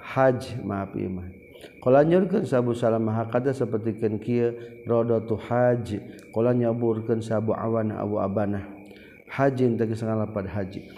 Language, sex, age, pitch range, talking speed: Indonesian, male, 40-59, 105-120 Hz, 130 wpm